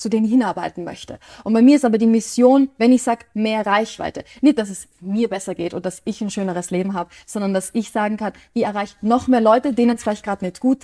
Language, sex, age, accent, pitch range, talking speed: German, female, 20-39, German, 205-240 Hz, 250 wpm